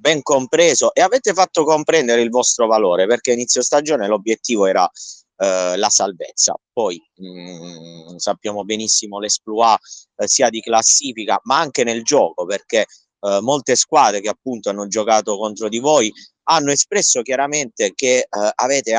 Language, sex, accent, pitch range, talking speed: Italian, male, native, 105-125 Hz, 140 wpm